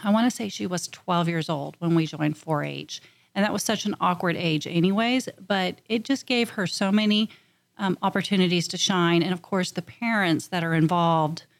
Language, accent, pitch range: English, American, 165-195 Hz